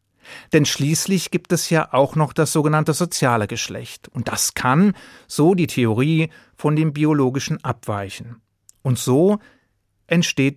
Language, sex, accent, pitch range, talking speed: German, male, German, 120-155 Hz, 135 wpm